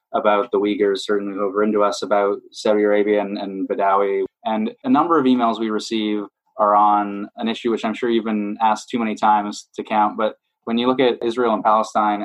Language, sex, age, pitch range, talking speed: English, male, 20-39, 100-115 Hz, 210 wpm